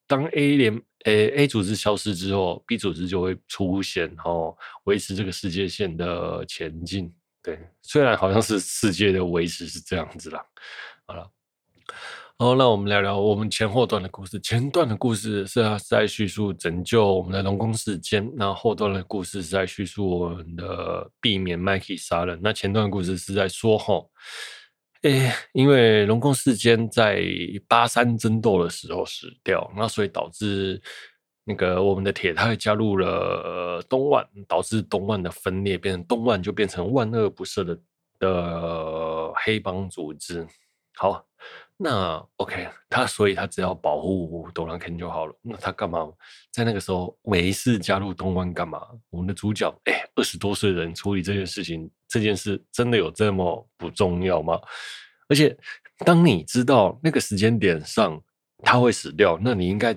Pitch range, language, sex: 90-110 Hz, Chinese, male